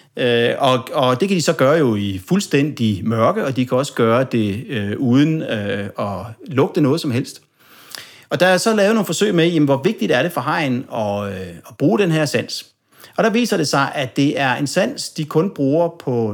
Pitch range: 130-185 Hz